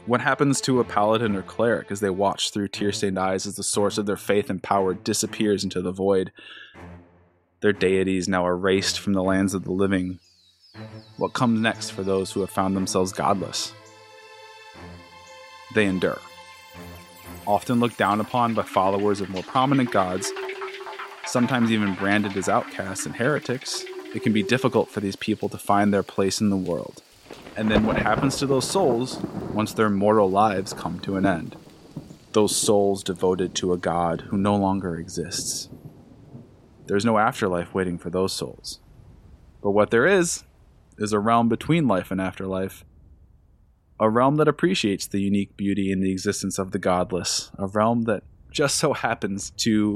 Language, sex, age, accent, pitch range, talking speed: English, male, 20-39, American, 95-115 Hz, 170 wpm